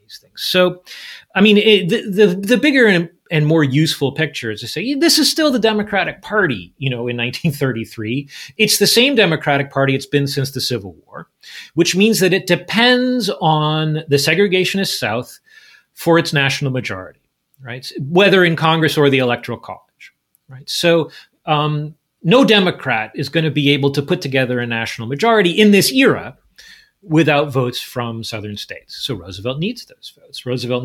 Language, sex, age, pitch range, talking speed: English, male, 30-49, 125-180 Hz, 170 wpm